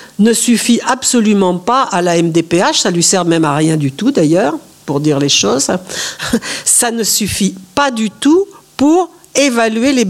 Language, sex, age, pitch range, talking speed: French, female, 60-79, 185-265 Hz, 185 wpm